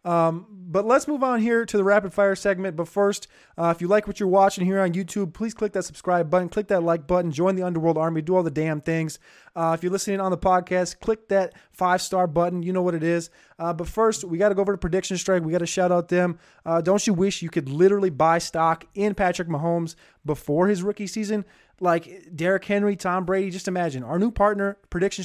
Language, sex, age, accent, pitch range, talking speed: English, male, 20-39, American, 165-190 Hz, 240 wpm